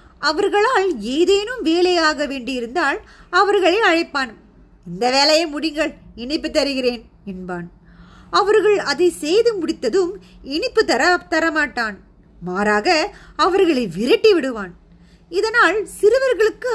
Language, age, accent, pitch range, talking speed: Tamil, 20-39, native, 215-355 Hz, 90 wpm